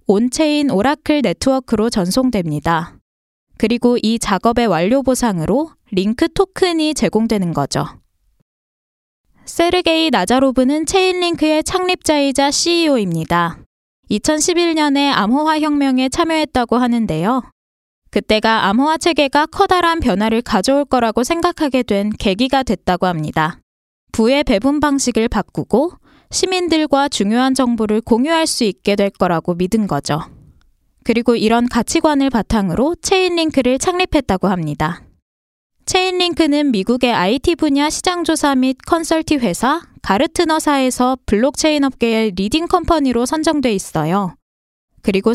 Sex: female